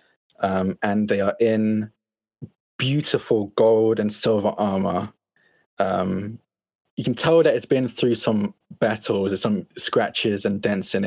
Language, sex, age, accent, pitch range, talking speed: English, male, 20-39, British, 100-115 Hz, 140 wpm